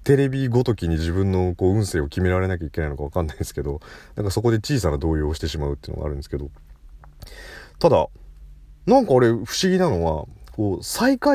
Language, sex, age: Japanese, male, 30-49